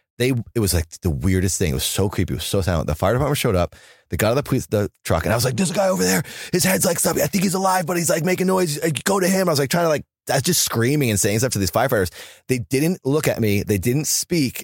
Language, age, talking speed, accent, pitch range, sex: English, 30-49, 315 wpm, American, 95-145 Hz, male